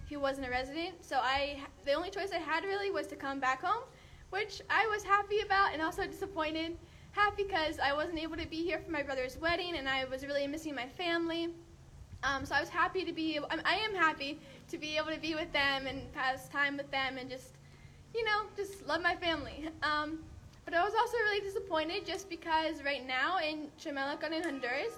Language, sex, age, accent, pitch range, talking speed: English, female, 10-29, American, 280-360 Hz, 215 wpm